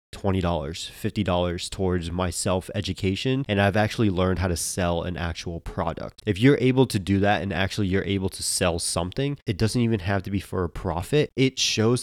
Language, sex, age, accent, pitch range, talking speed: English, male, 20-39, American, 95-115 Hz, 185 wpm